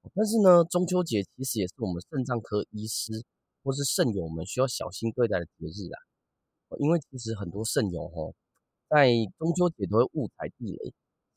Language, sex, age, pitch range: Chinese, male, 30-49, 105-145 Hz